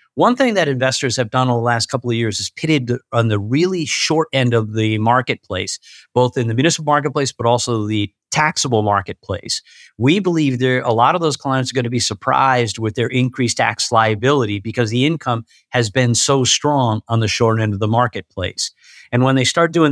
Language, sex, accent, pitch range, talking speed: English, male, American, 115-135 Hz, 205 wpm